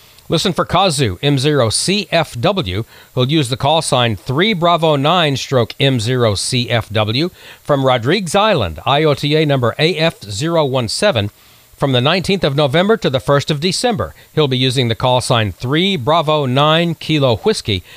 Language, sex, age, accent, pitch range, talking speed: English, male, 50-69, American, 120-160 Hz, 110 wpm